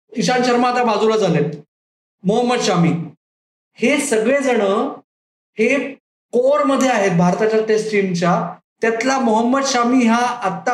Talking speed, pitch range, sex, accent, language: 110 wpm, 210-255 Hz, male, native, Marathi